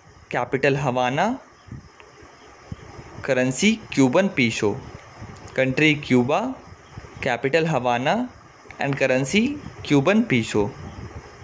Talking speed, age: 70 wpm, 20-39